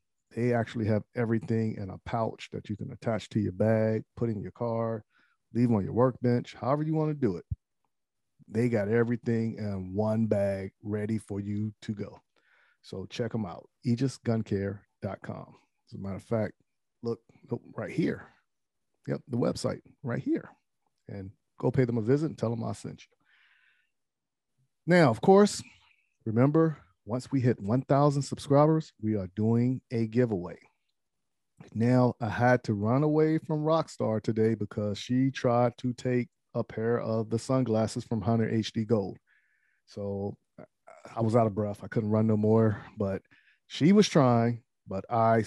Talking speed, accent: 165 wpm, American